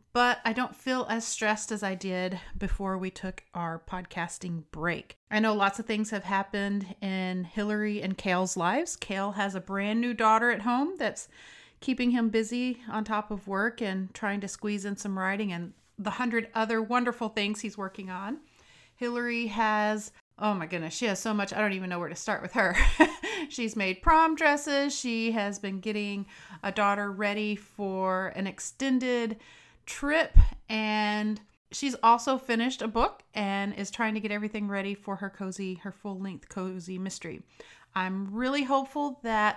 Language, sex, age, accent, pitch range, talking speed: English, female, 40-59, American, 195-235 Hz, 175 wpm